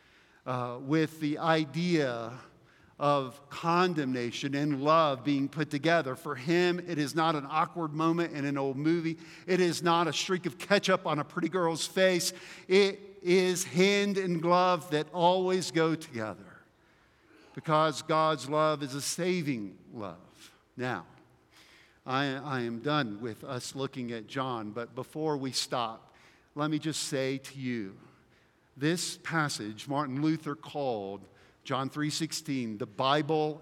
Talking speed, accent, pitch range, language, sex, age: 145 wpm, American, 140-170 Hz, English, male, 50-69